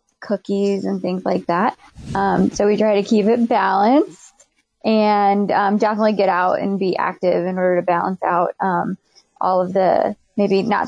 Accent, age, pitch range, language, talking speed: American, 20-39, 190-235 Hz, English, 175 wpm